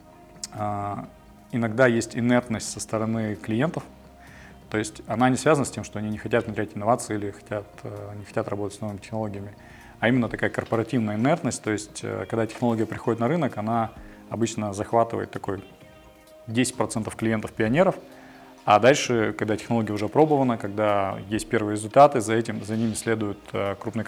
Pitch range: 105-115 Hz